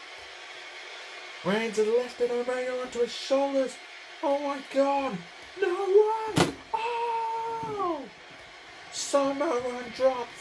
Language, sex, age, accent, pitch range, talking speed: English, male, 30-49, British, 235-275 Hz, 85 wpm